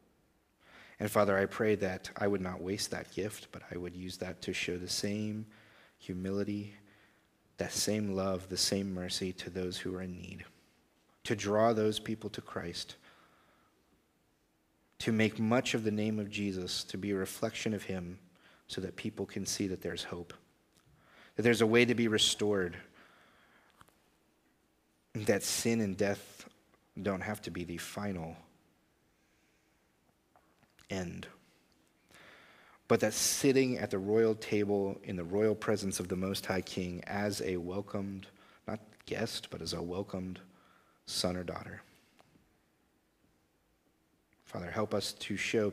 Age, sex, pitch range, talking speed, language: 30-49, male, 90-105 Hz, 145 wpm, English